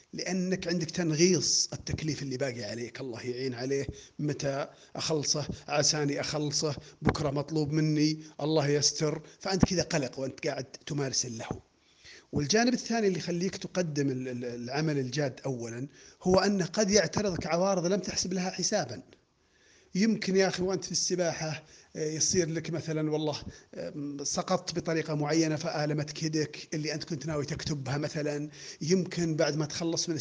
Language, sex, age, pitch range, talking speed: Arabic, male, 40-59, 145-185 Hz, 135 wpm